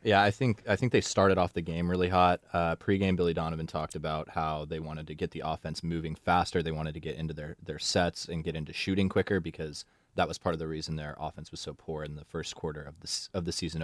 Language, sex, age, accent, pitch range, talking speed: English, male, 20-39, American, 80-100 Hz, 265 wpm